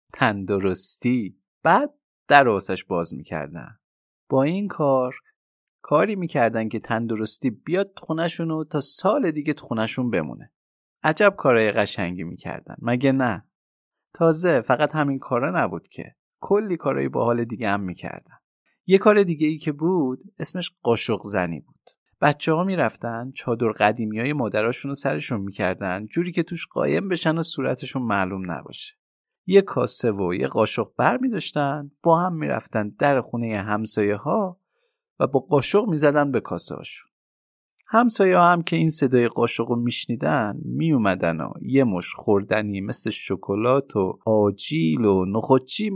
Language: English